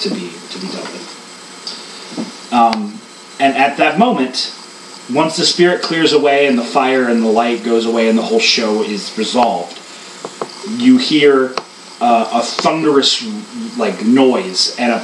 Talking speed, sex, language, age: 150 wpm, male, English, 30-49